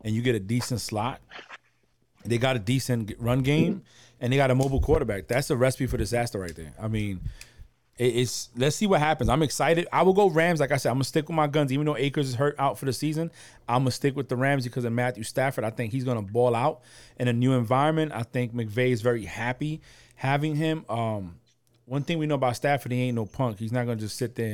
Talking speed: 255 wpm